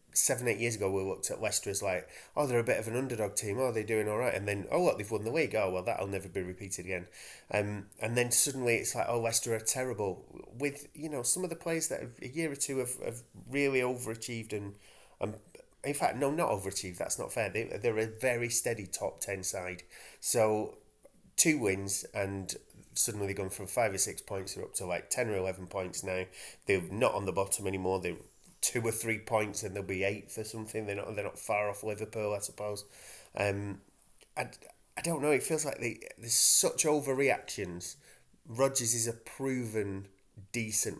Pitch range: 95-120 Hz